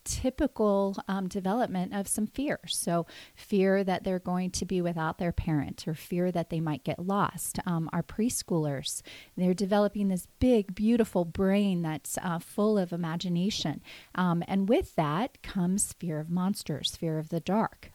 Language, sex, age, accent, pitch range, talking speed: English, female, 30-49, American, 175-210 Hz, 165 wpm